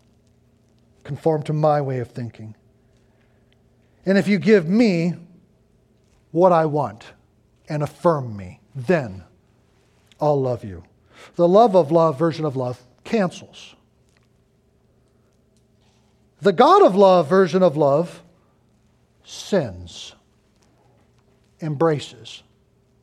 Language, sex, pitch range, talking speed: English, male, 110-155 Hz, 100 wpm